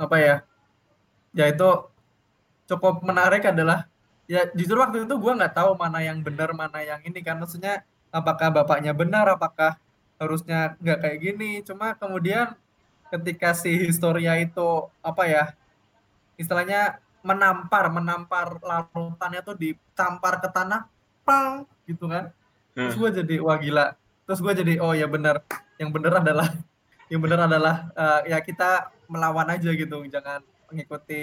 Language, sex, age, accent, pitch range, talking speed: Indonesian, male, 20-39, native, 150-180 Hz, 140 wpm